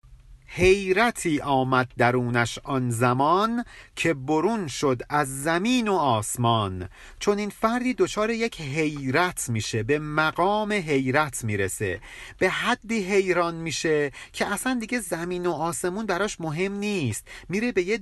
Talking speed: 130 wpm